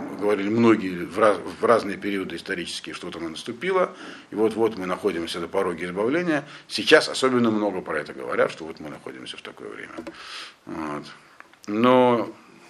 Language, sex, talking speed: Russian, male, 170 wpm